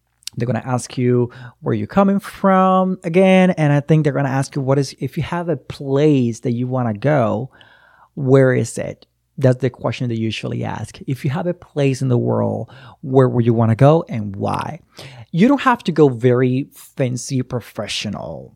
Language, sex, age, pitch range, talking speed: English, male, 30-49, 120-150 Hz, 205 wpm